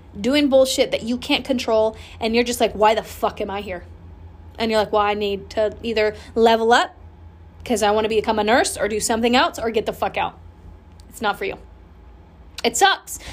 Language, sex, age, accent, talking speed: English, female, 20-39, American, 215 wpm